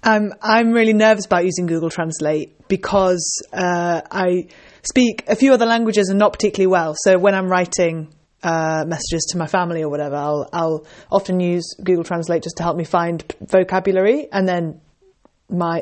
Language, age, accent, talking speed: English, 20-39, British, 180 wpm